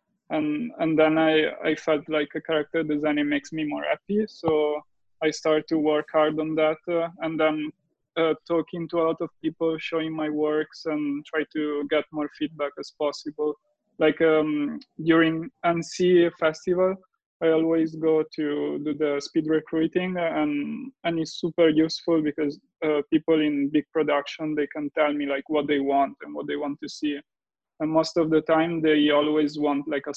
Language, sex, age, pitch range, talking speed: English, male, 20-39, 150-170 Hz, 180 wpm